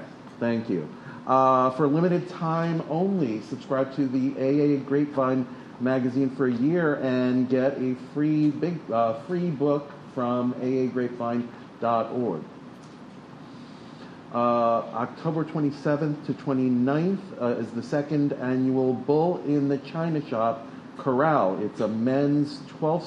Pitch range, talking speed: 125-145 Hz, 115 wpm